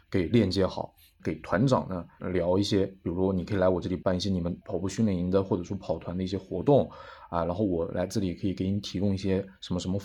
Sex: male